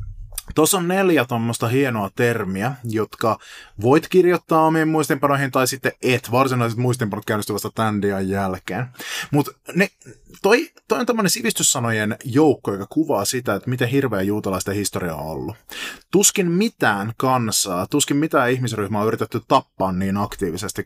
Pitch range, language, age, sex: 100-140 Hz, Finnish, 20-39, male